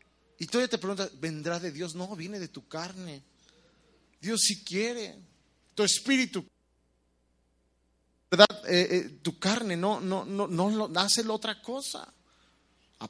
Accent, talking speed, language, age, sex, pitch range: Mexican, 140 wpm, Spanish, 40-59, male, 155-230 Hz